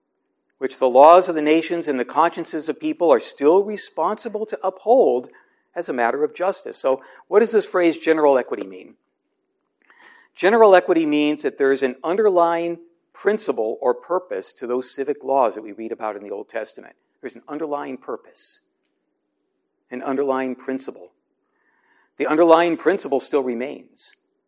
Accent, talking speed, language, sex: American, 155 wpm, English, male